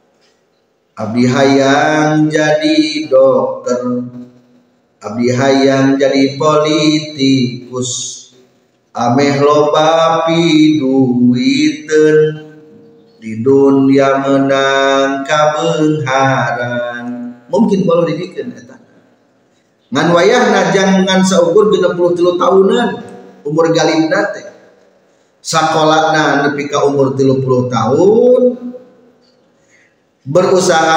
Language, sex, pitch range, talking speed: Indonesian, male, 135-190 Hz, 70 wpm